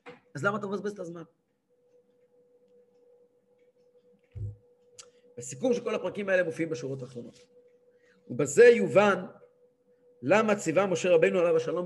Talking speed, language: 105 wpm, English